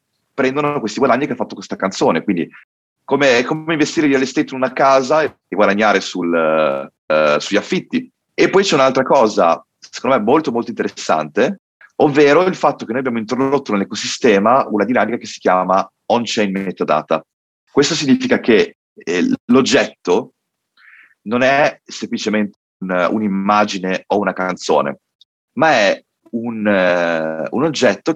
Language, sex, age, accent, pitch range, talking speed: Italian, male, 30-49, native, 100-145 Hz, 145 wpm